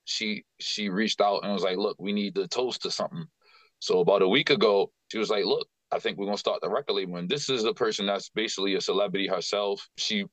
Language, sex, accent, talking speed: English, male, American, 240 wpm